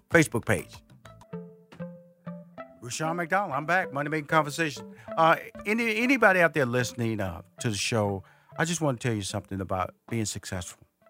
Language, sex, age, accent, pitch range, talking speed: English, male, 50-69, American, 105-135 Hz, 150 wpm